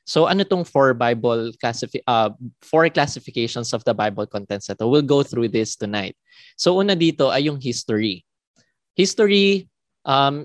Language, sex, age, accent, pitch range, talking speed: English, male, 20-39, Filipino, 120-155 Hz, 145 wpm